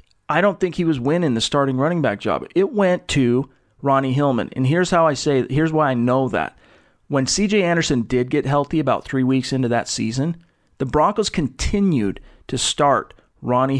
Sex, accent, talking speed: male, American, 190 wpm